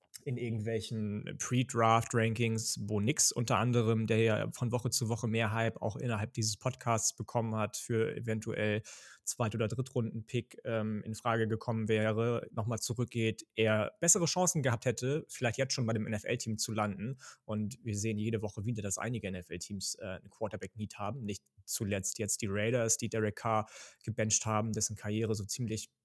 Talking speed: 165 wpm